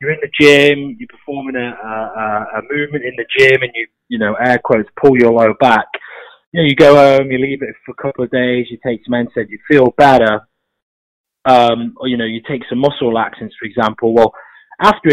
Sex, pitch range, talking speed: male, 115-150 Hz, 220 wpm